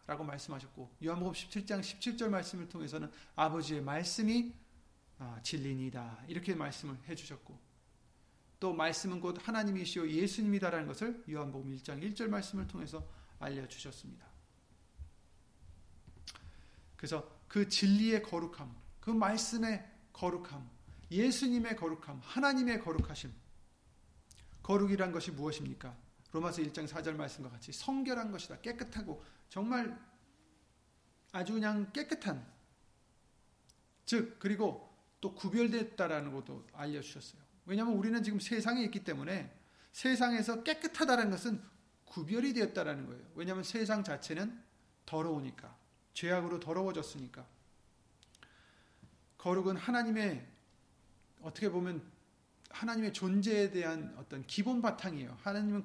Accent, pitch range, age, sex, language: native, 145-215 Hz, 40-59, male, Korean